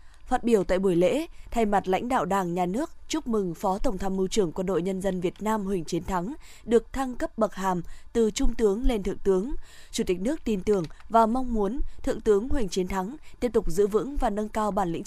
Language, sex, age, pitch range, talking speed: Vietnamese, female, 20-39, 190-240 Hz, 245 wpm